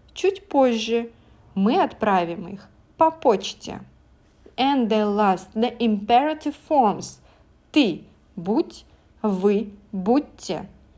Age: 30-49